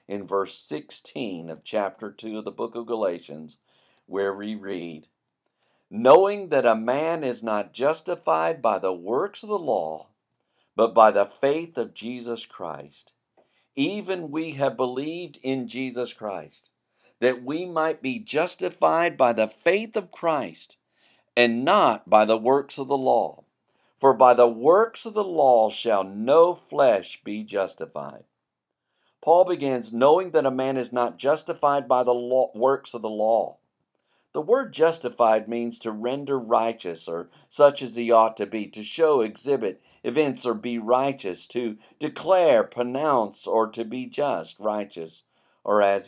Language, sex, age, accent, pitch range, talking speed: English, male, 50-69, American, 105-140 Hz, 150 wpm